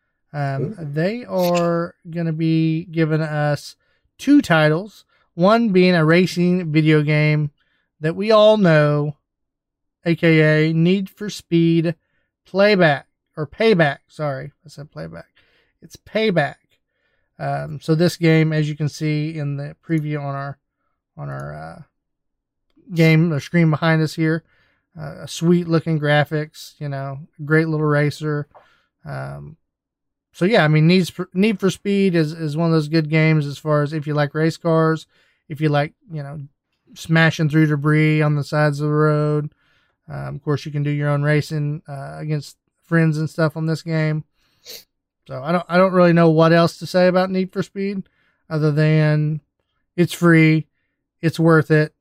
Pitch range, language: 145-165 Hz, English